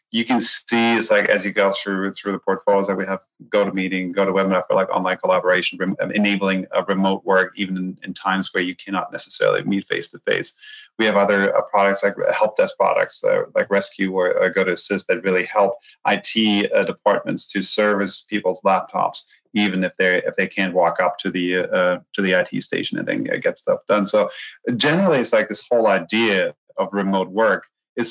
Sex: male